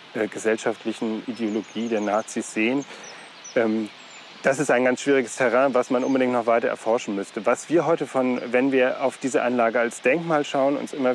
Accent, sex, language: German, male, German